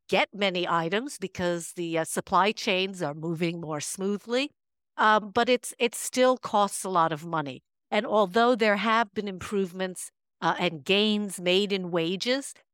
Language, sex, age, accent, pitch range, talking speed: English, female, 50-69, American, 175-235 Hz, 160 wpm